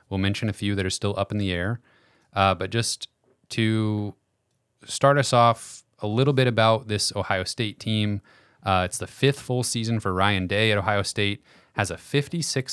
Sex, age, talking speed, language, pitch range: male, 30-49, 195 wpm, English, 95-120 Hz